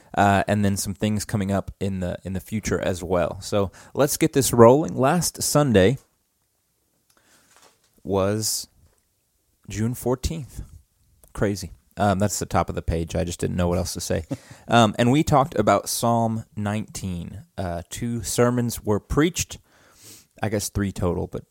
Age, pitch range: 30-49, 95-120 Hz